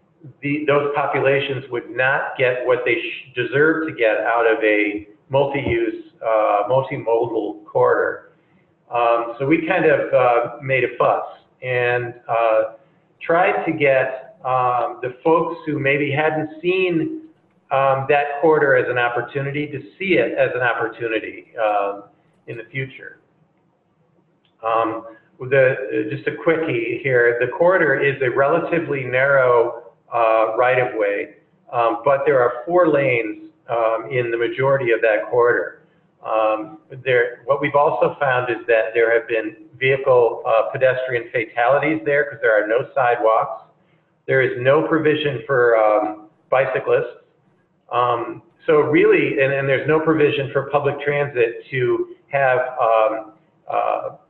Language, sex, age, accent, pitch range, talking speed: English, male, 50-69, American, 120-170 Hz, 140 wpm